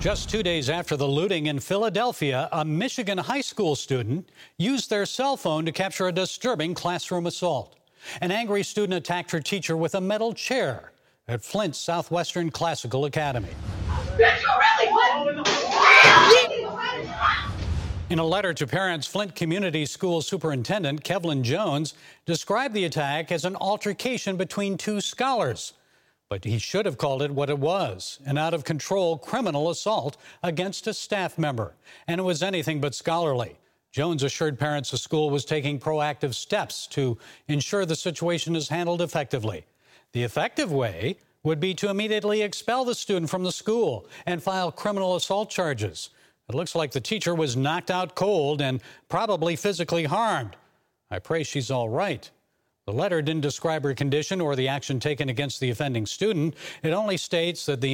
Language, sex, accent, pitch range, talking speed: English, male, American, 145-195 Hz, 155 wpm